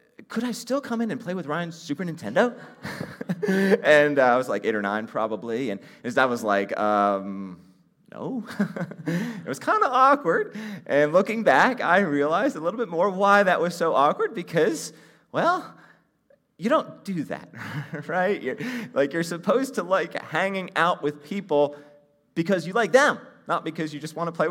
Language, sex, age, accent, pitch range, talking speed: English, male, 30-49, American, 155-225 Hz, 180 wpm